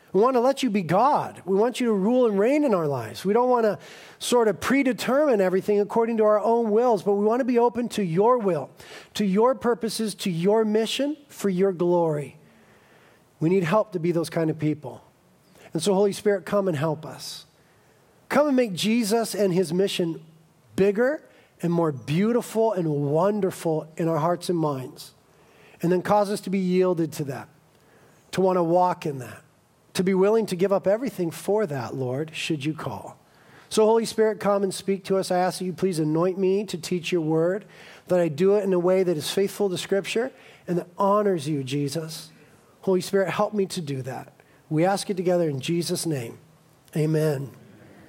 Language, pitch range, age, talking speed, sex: English, 165-220 Hz, 40-59, 200 wpm, male